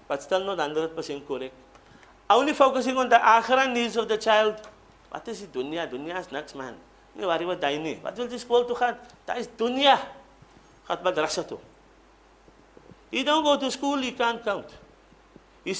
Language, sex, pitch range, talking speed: English, male, 200-290 Hz, 150 wpm